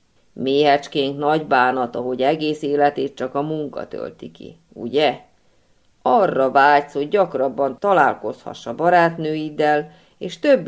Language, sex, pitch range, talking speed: Hungarian, female, 140-175 Hz, 120 wpm